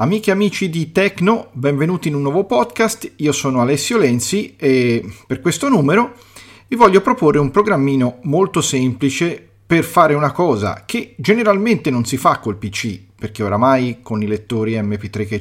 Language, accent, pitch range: Italian, native, 110-175 Hz